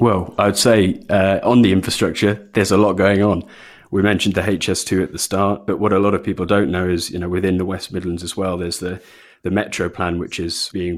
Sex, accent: male, British